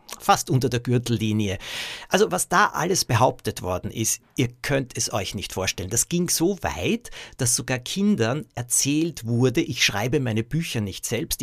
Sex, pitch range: male, 110-135 Hz